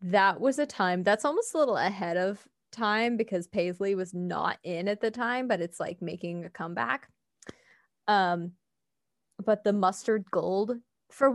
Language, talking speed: English, 165 wpm